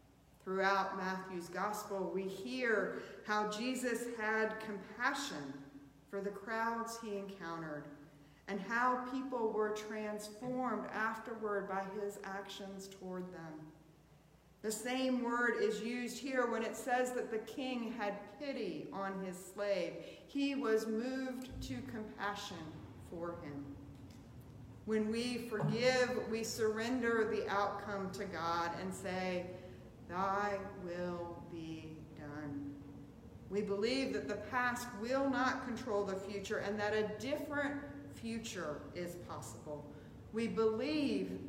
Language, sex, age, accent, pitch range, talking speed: English, female, 40-59, American, 175-230 Hz, 120 wpm